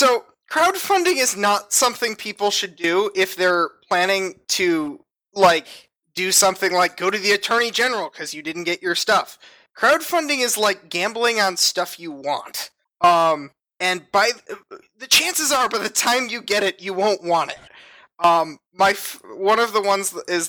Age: 20-39